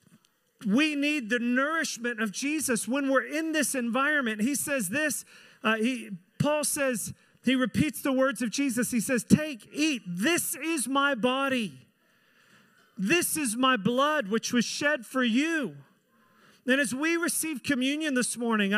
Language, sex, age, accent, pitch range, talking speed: English, male, 40-59, American, 230-285 Hz, 155 wpm